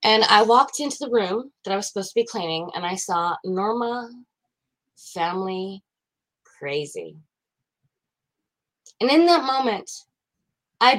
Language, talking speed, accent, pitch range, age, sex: English, 130 wpm, American, 180-250 Hz, 20-39, female